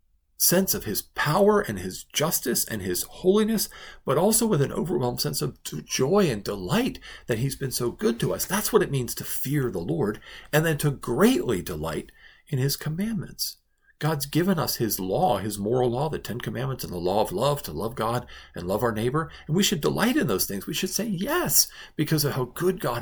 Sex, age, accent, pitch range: male, 50-69, American, 105-160 Hz